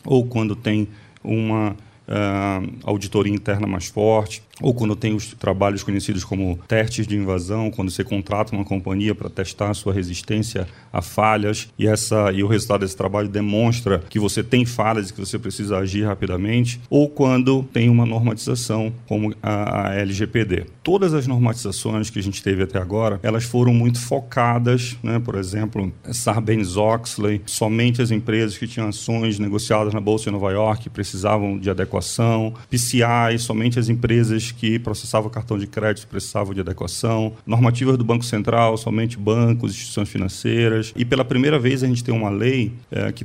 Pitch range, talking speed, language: 105-120 Hz, 160 wpm, Portuguese